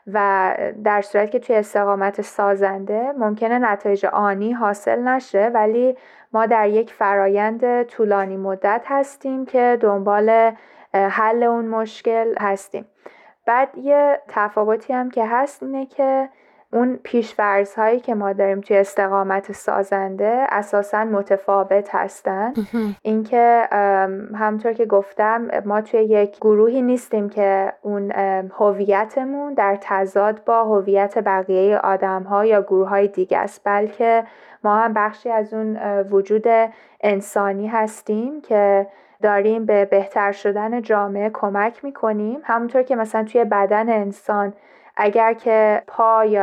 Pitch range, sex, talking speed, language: 200-235 Hz, female, 125 wpm, Persian